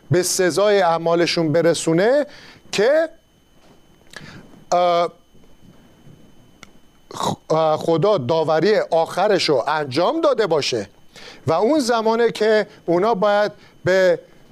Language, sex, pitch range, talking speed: Persian, male, 165-215 Hz, 75 wpm